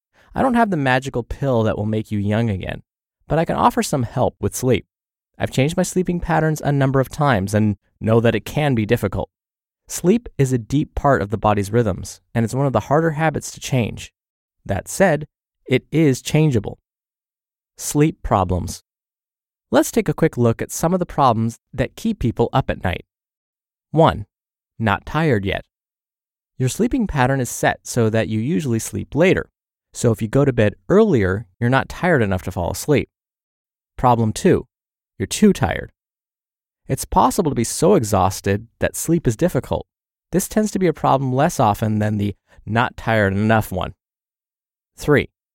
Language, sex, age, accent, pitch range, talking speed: English, male, 20-39, American, 110-150 Hz, 180 wpm